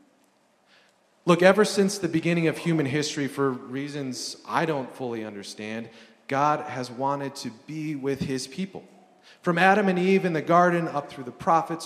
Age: 30-49